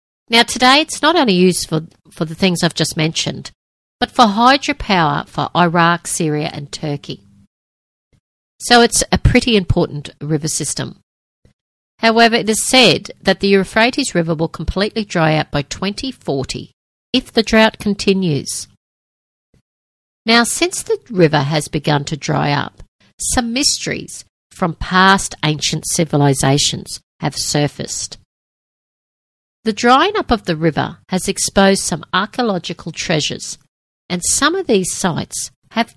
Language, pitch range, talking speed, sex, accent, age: English, 160-230 Hz, 130 wpm, female, Australian, 50-69